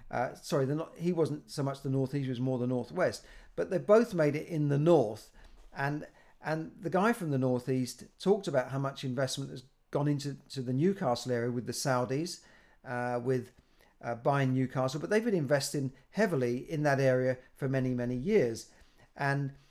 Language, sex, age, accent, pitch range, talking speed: English, male, 40-59, British, 130-160 Hz, 190 wpm